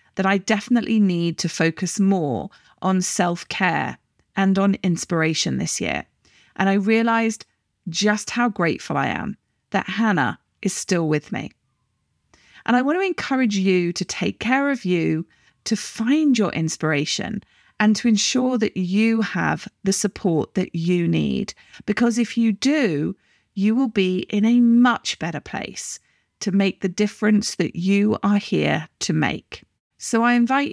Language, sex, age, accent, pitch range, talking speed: English, female, 40-59, British, 175-230 Hz, 155 wpm